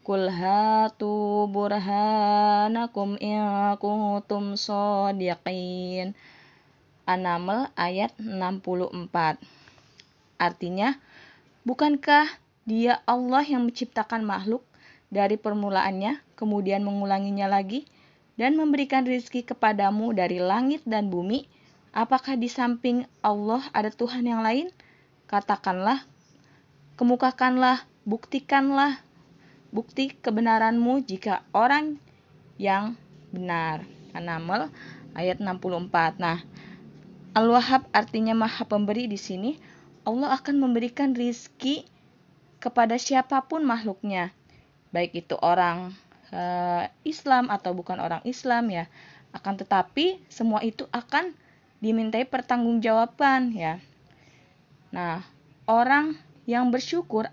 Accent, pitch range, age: native, 185-250 Hz, 20-39